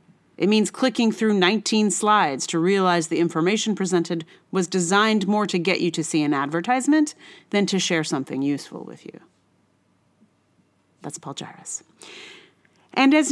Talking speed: 150 wpm